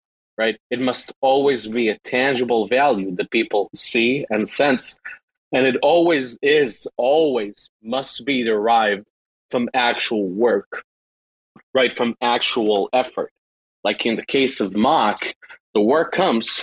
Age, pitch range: 30-49, 110-130 Hz